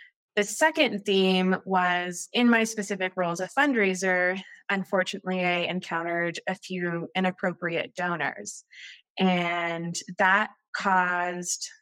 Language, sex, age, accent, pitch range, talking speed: English, female, 20-39, American, 170-205 Hz, 105 wpm